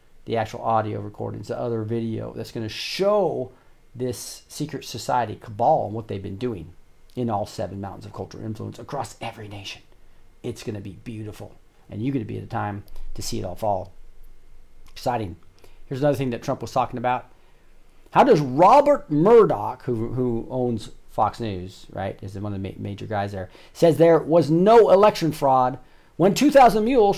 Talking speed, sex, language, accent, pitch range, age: 185 wpm, male, English, American, 105-130 Hz, 40-59